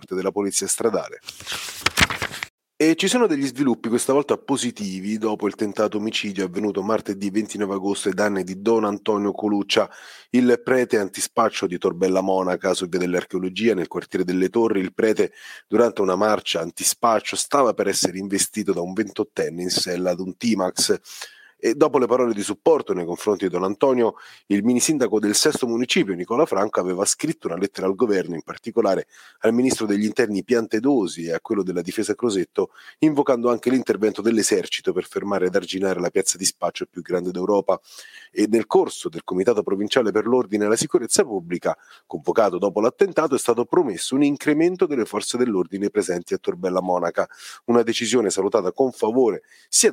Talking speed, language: 170 wpm, Italian